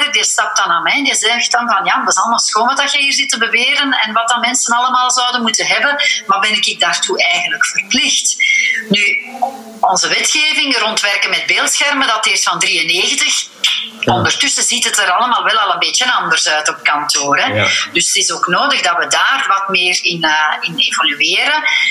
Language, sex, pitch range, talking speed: Dutch, female, 220-370 Hz, 205 wpm